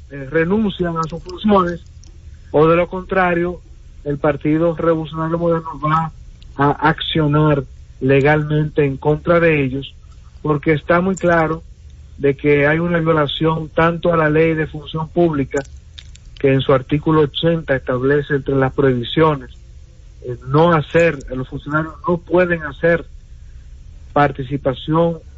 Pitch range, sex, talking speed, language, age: 135-165 Hz, male, 130 wpm, English, 50-69